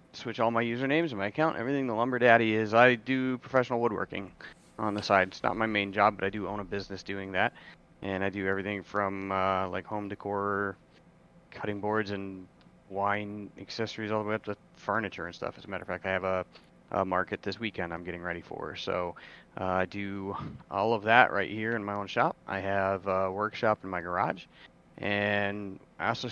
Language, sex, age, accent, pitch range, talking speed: English, male, 30-49, American, 100-115 Hz, 210 wpm